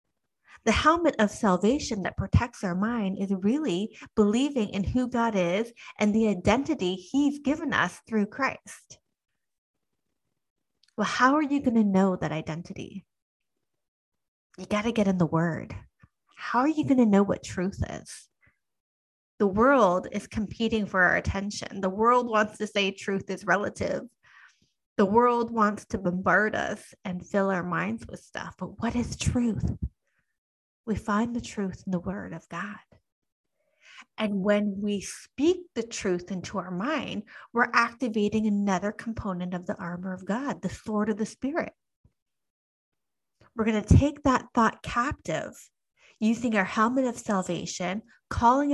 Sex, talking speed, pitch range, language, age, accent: female, 155 wpm, 195-240 Hz, English, 30-49, American